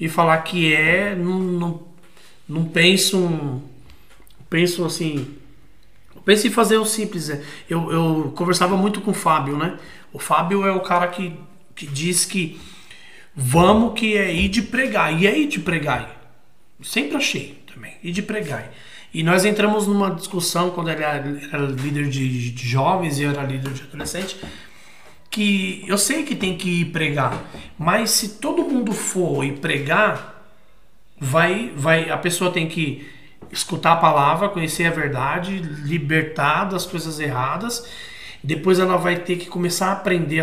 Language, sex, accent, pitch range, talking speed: English, male, Brazilian, 155-195 Hz, 155 wpm